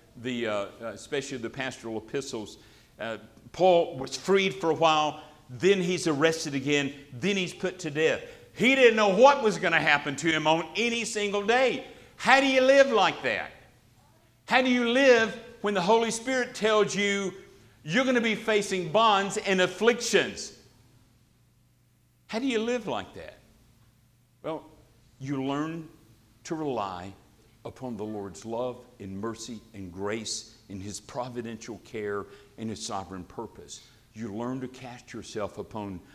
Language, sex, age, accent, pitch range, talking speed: English, male, 60-79, American, 115-185 Hz, 155 wpm